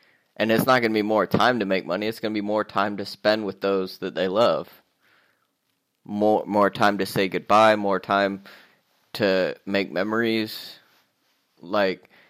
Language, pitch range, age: English, 100-110 Hz, 20-39